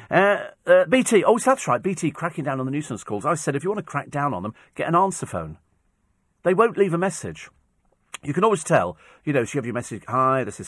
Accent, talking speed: British, 245 wpm